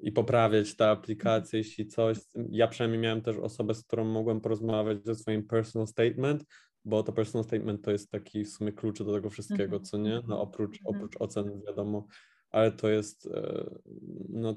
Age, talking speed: 20-39, 175 wpm